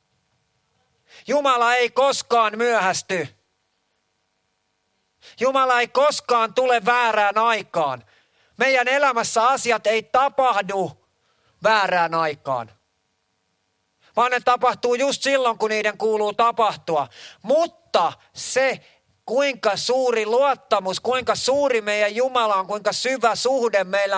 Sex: male